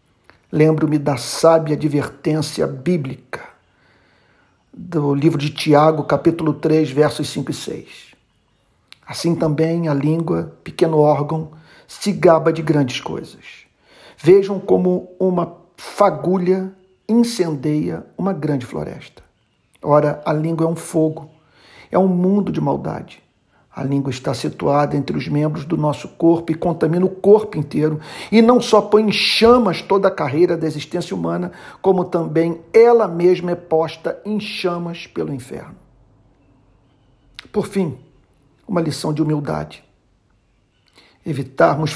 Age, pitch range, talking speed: 50-69, 150-180 Hz, 125 wpm